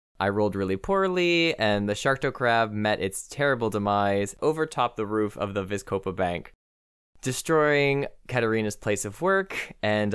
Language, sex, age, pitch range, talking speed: English, male, 20-39, 95-125 Hz, 155 wpm